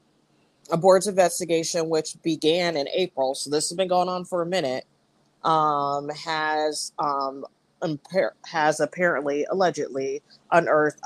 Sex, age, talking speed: female, 20-39, 130 wpm